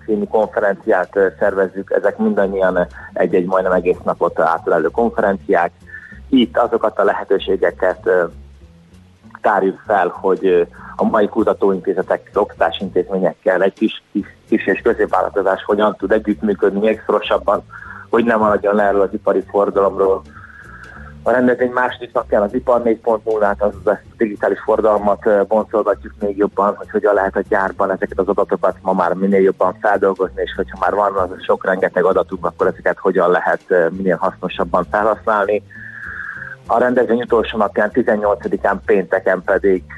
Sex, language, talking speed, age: male, Hungarian, 130 wpm, 30-49